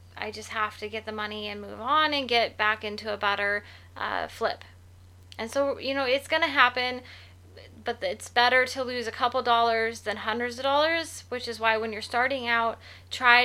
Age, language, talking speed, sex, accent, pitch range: 20-39, English, 205 wpm, female, American, 210-245 Hz